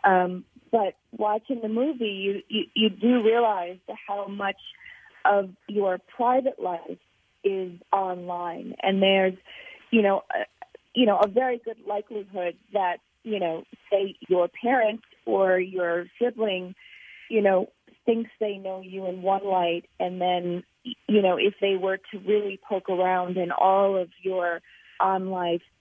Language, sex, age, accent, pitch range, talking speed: English, female, 30-49, American, 185-220 Hz, 150 wpm